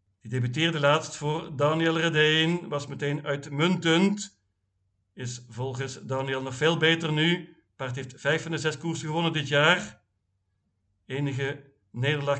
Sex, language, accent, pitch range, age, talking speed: male, Dutch, Dutch, 130-165 Hz, 50-69, 145 wpm